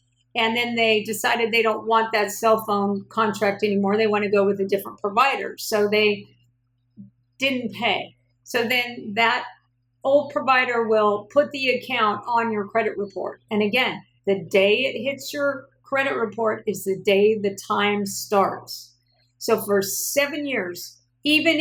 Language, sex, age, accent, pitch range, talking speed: English, female, 50-69, American, 180-225 Hz, 160 wpm